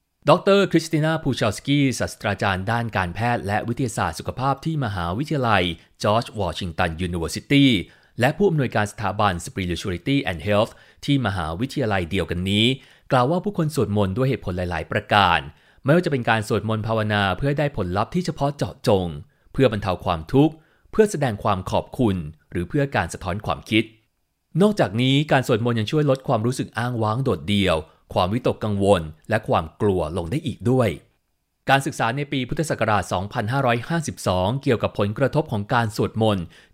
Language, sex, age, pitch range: Thai, male, 30-49, 100-135 Hz